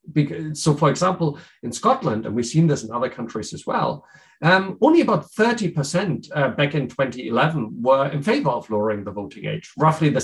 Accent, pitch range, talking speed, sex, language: German, 120-170 Hz, 190 wpm, male, English